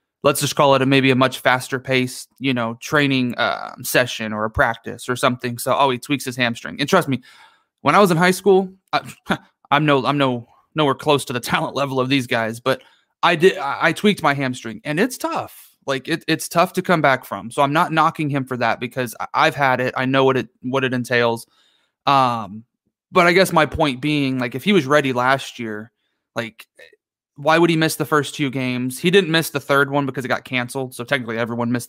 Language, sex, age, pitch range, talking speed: English, male, 30-49, 125-155 Hz, 235 wpm